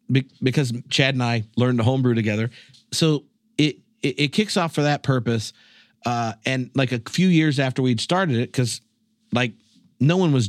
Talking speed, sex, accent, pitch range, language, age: 185 wpm, male, American, 120-160 Hz, English, 40-59